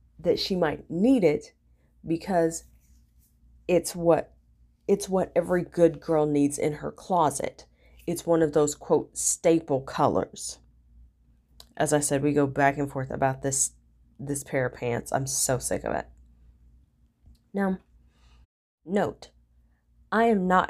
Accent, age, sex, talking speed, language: American, 30-49, female, 140 wpm, English